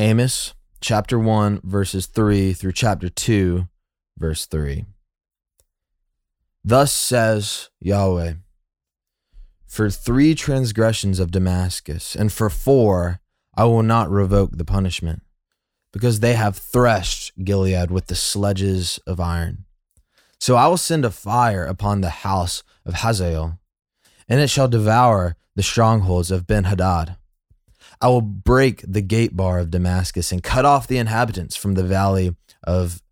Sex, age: male, 20-39